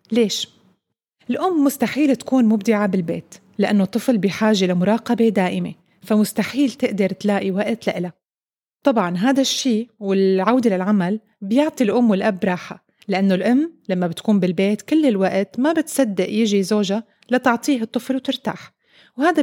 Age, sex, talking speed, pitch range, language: 30-49, female, 125 wpm, 195-245 Hz, Arabic